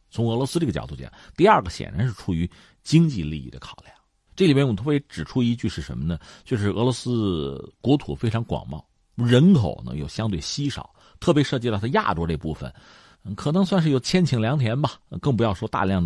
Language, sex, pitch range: Chinese, male, 90-135 Hz